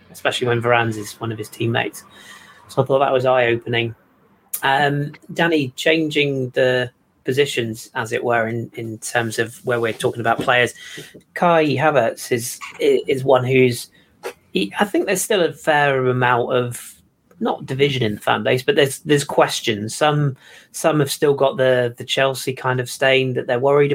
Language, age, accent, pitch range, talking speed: English, 30-49, British, 120-145 Hz, 180 wpm